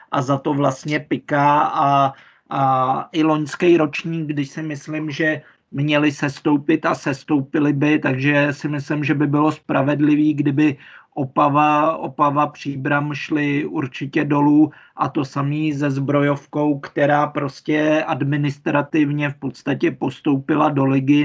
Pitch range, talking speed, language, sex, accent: 135-150 Hz, 130 wpm, Czech, male, native